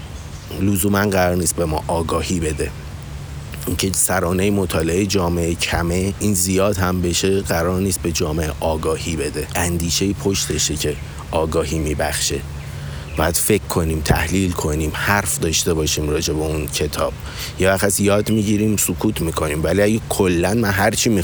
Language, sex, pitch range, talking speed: Persian, male, 80-100 Hz, 155 wpm